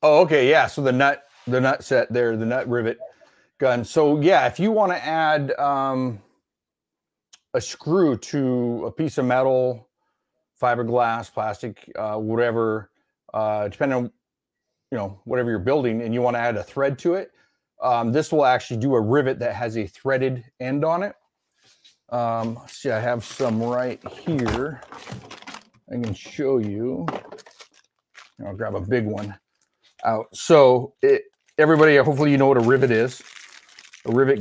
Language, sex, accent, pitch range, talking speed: English, male, American, 115-140 Hz, 160 wpm